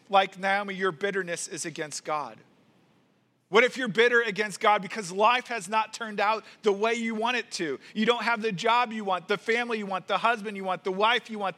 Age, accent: 40-59, American